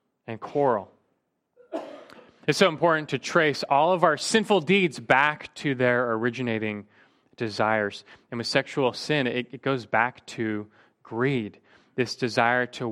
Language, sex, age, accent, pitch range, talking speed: English, male, 30-49, American, 120-175 Hz, 140 wpm